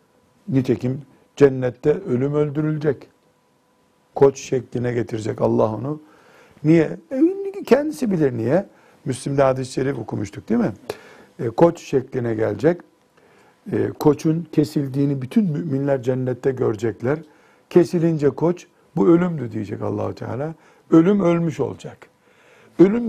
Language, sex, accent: Turkish, male, native